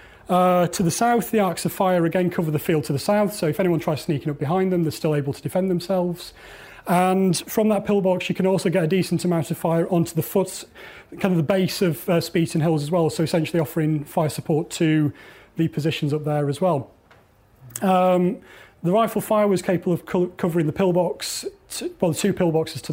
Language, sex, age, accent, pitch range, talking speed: English, male, 30-49, British, 155-185 Hz, 215 wpm